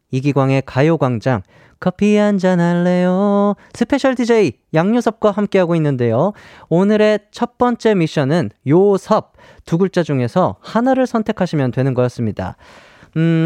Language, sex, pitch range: Korean, male, 145-215 Hz